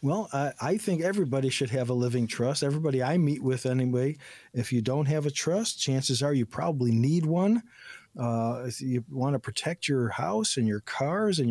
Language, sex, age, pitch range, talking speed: English, male, 50-69, 120-150 Hz, 200 wpm